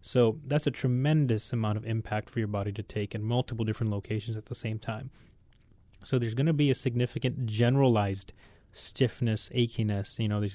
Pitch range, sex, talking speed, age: 110-125 Hz, male, 190 wpm, 30-49